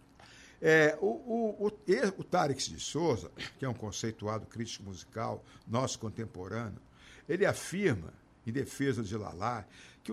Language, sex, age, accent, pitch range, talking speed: Portuguese, male, 60-79, Brazilian, 125-195 Hz, 135 wpm